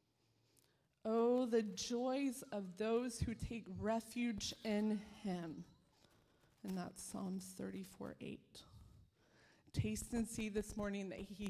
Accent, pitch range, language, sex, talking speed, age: American, 190-230 Hz, English, female, 115 wpm, 20-39